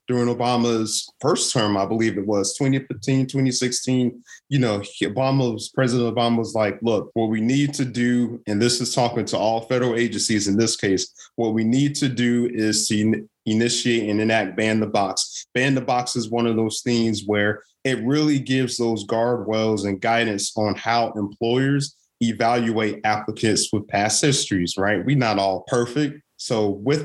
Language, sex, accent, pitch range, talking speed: English, male, American, 110-135 Hz, 175 wpm